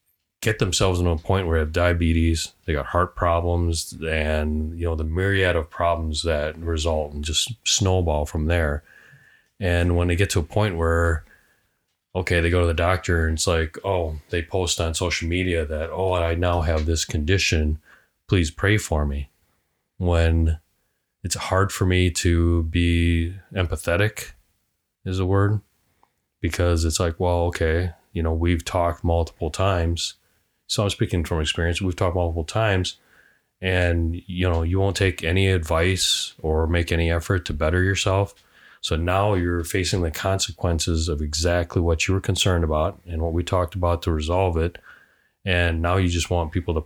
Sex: male